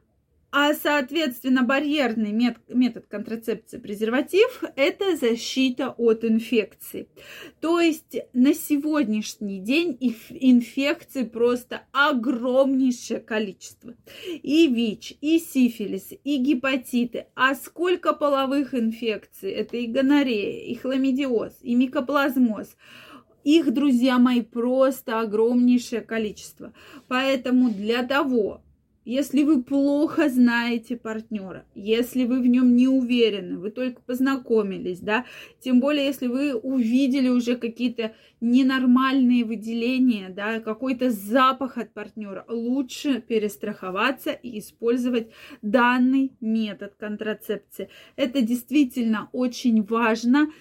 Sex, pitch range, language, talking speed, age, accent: female, 230-275 Hz, Russian, 100 wpm, 20-39, native